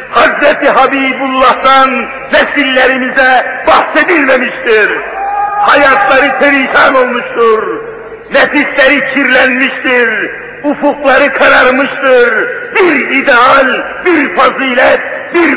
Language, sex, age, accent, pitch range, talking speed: Turkish, male, 50-69, native, 230-315 Hz, 60 wpm